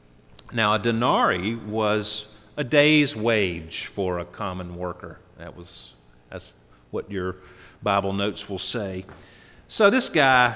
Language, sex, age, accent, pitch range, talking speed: English, male, 40-59, American, 90-135 Hz, 130 wpm